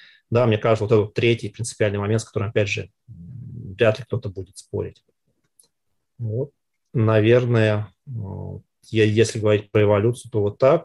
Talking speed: 145 wpm